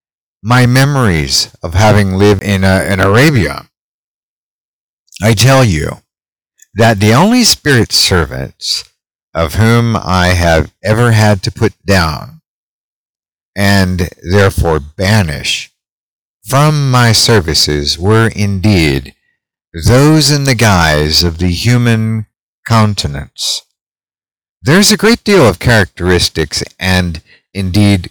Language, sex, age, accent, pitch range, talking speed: English, male, 50-69, American, 85-115 Hz, 110 wpm